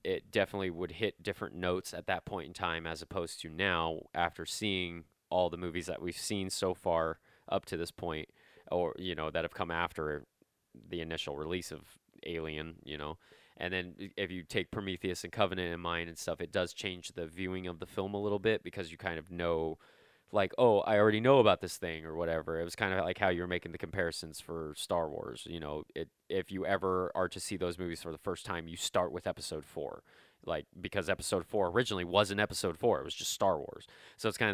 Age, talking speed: 20-39, 230 wpm